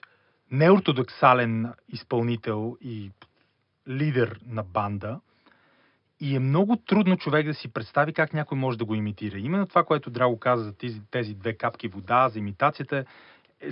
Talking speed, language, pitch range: 150 wpm, Bulgarian, 115-150 Hz